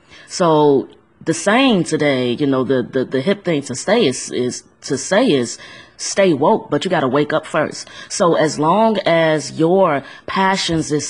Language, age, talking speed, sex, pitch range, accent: English, 20-39, 180 wpm, female, 145-185 Hz, American